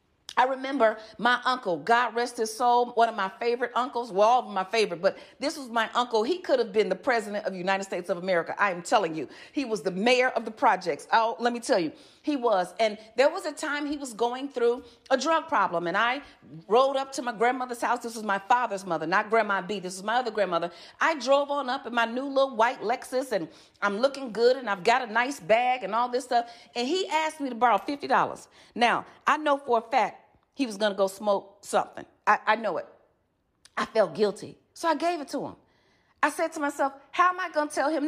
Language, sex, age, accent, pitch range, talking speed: English, female, 40-59, American, 215-275 Hz, 245 wpm